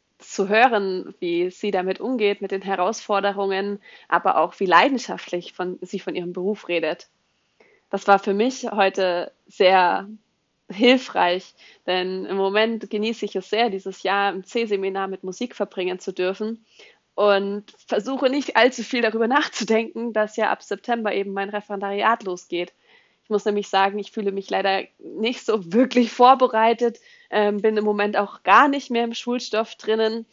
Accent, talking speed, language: German, 155 wpm, German